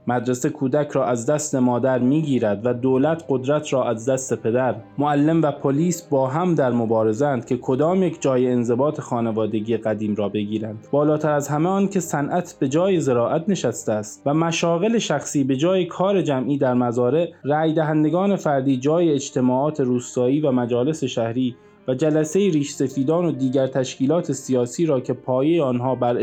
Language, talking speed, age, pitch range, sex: Persian, 165 wpm, 20-39, 120-155 Hz, male